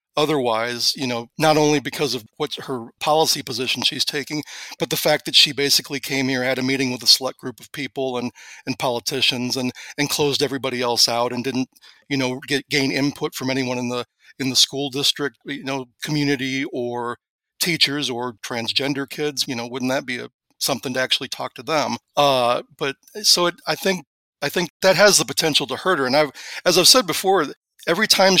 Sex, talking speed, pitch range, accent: male, 205 wpm, 125-150 Hz, American